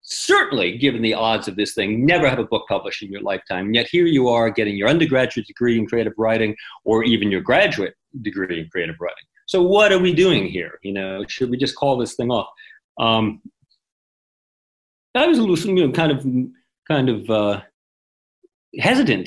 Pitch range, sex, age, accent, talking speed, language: 110-170 Hz, male, 40-59, American, 195 wpm, English